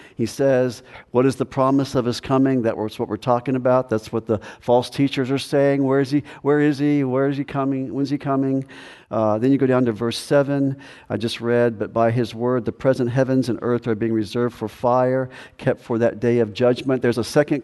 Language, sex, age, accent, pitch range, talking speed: English, male, 50-69, American, 115-135 Hz, 235 wpm